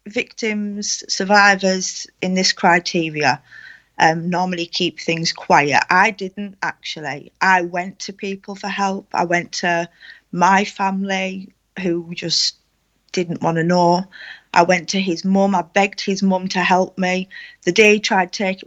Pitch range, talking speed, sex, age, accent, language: 175-200 Hz, 150 wpm, female, 30-49, British, English